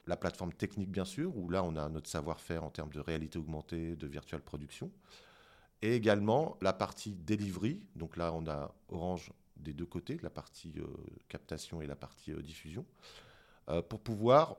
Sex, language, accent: male, French, French